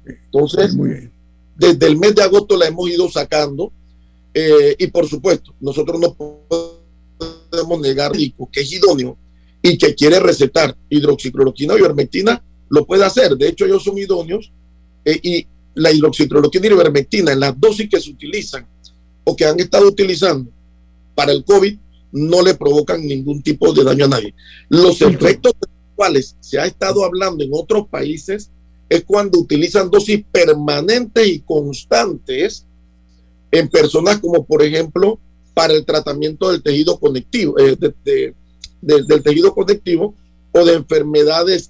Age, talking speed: 40-59, 140 wpm